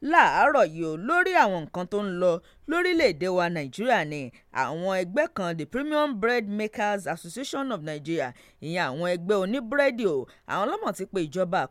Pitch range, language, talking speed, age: 165-255 Hz, English, 175 wpm, 30-49